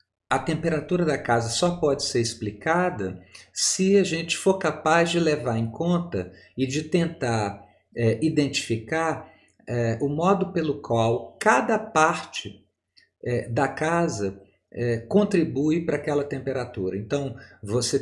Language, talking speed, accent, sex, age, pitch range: Portuguese, 115 wpm, Brazilian, male, 50-69, 115-160 Hz